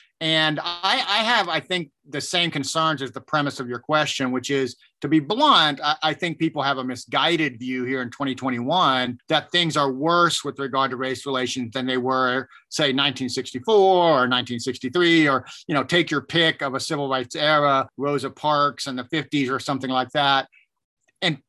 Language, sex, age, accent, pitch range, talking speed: English, male, 40-59, American, 135-165 Hz, 190 wpm